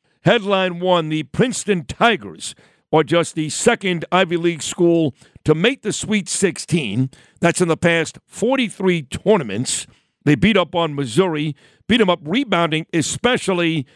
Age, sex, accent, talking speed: 50-69, male, American, 140 wpm